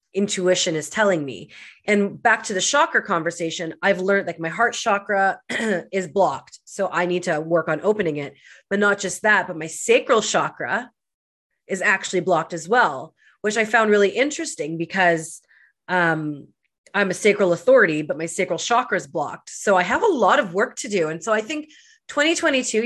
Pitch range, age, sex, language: 180-220 Hz, 30-49, female, English